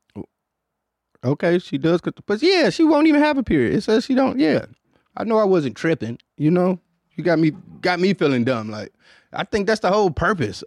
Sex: male